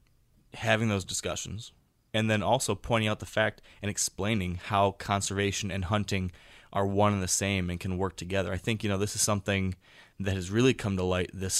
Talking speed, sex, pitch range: 200 wpm, male, 95-105 Hz